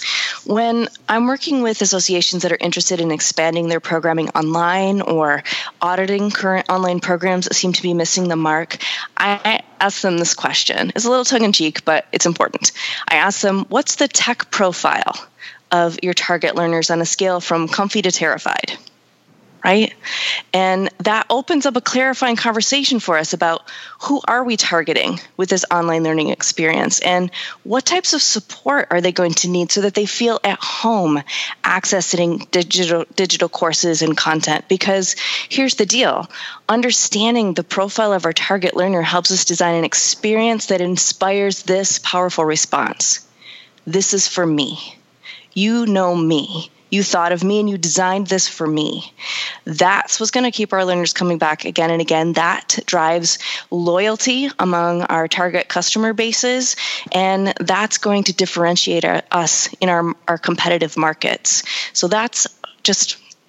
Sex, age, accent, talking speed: female, 20-39, American, 160 wpm